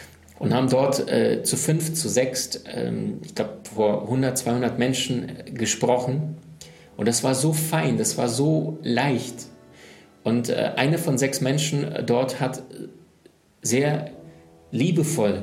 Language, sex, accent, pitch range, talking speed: German, male, German, 110-135 Hz, 135 wpm